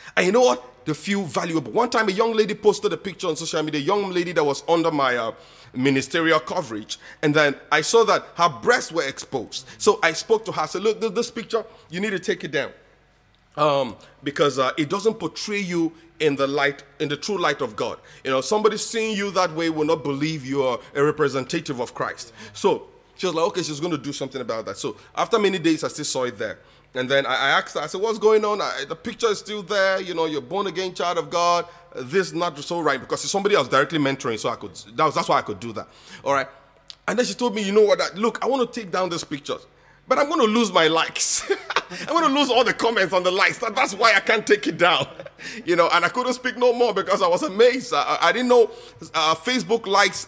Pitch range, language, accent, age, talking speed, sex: 155-225 Hz, English, Nigerian, 30-49, 255 wpm, male